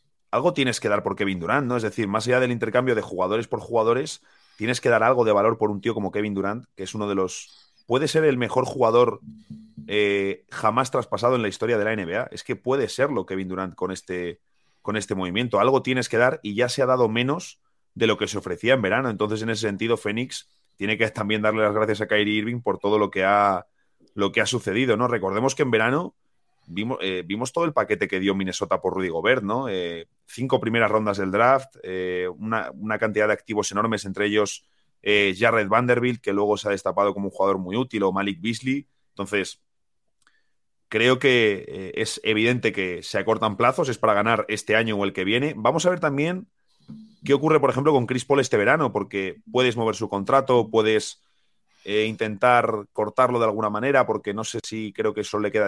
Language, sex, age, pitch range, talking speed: Spanish, male, 30-49, 100-120 Hz, 220 wpm